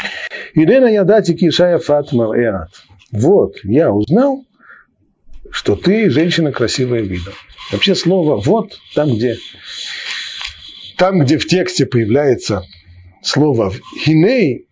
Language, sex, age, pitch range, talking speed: Russian, male, 40-59, 110-160 Hz, 95 wpm